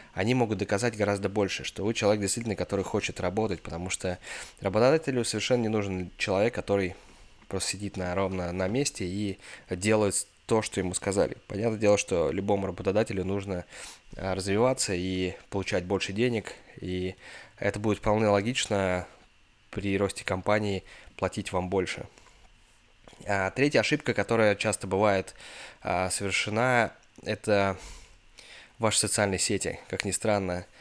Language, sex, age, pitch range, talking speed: Russian, male, 20-39, 95-105 Hz, 130 wpm